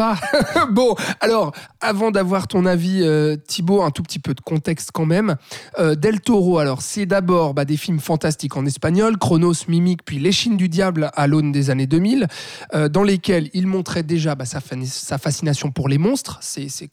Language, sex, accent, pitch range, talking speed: French, male, French, 150-200 Hz, 195 wpm